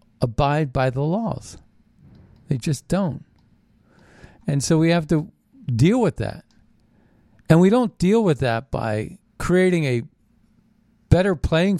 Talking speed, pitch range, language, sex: 130 wpm, 115-155 Hz, English, male